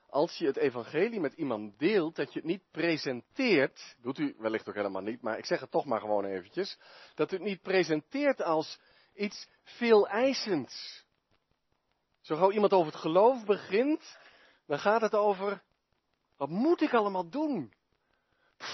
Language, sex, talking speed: Dutch, male, 165 wpm